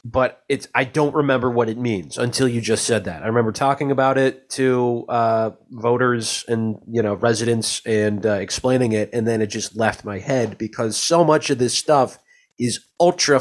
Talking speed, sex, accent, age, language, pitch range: 195 wpm, male, American, 30-49, English, 110-135 Hz